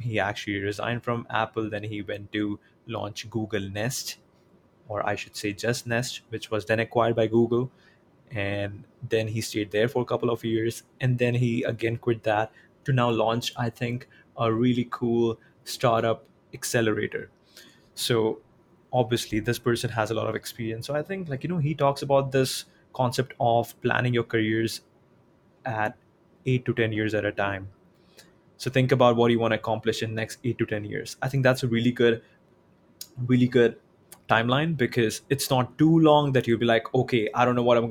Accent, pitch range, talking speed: Indian, 110-130 Hz, 190 wpm